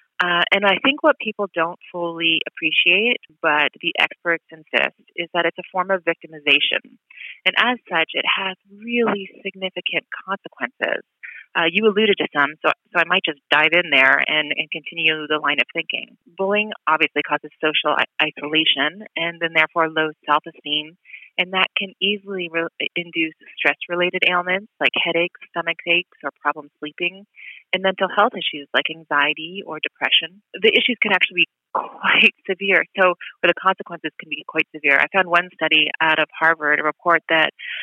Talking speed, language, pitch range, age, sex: 165 wpm, English, 155-190 Hz, 30-49, female